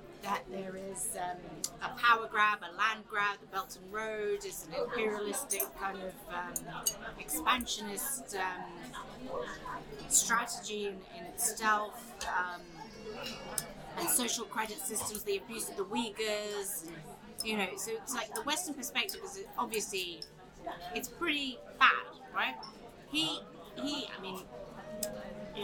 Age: 30-49